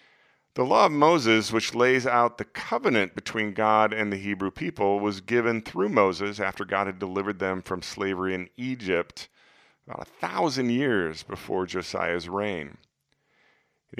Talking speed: 155 wpm